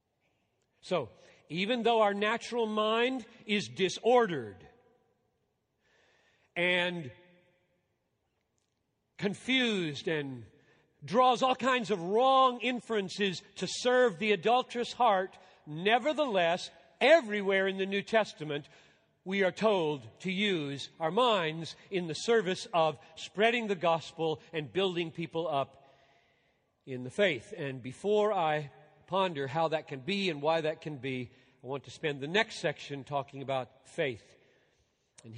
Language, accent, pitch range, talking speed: English, American, 130-195 Hz, 125 wpm